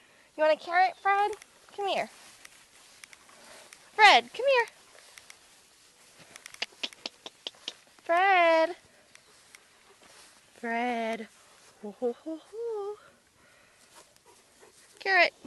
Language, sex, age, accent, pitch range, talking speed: English, female, 20-39, American, 215-330 Hz, 65 wpm